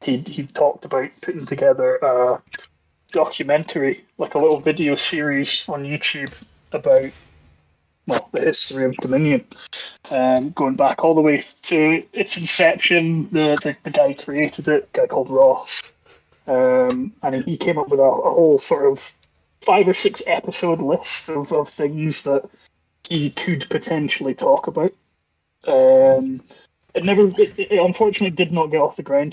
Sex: male